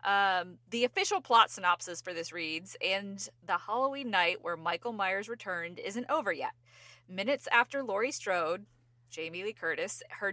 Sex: female